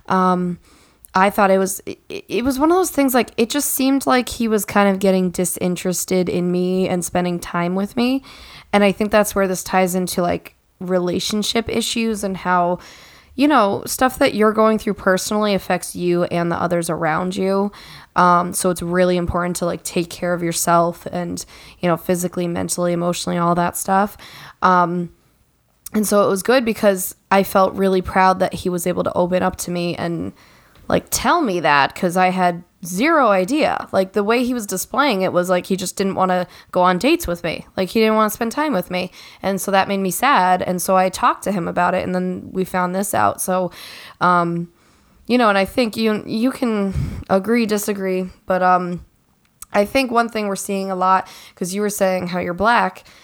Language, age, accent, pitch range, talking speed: English, 10-29, American, 180-210 Hz, 210 wpm